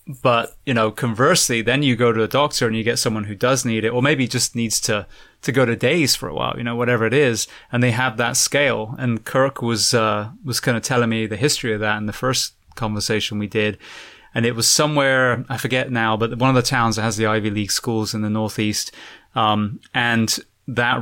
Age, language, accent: 20-39, English, British